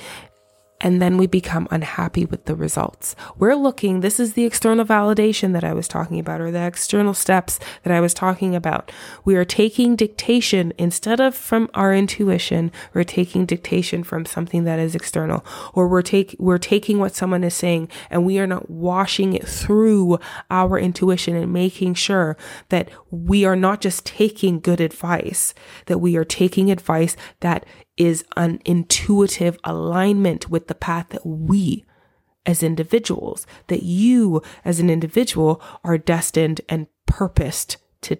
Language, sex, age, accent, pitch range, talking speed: English, female, 20-39, American, 170-195 Hz, 160 wpm